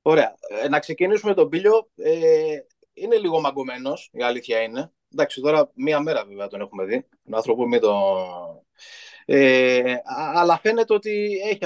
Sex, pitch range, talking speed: male, 125-190 Hz, 140 wpm